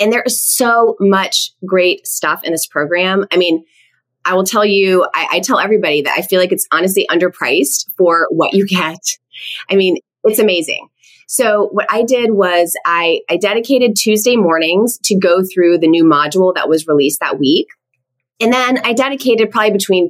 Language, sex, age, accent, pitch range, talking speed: English, female, 30-49, American, 170-220 Hz, 185 wpm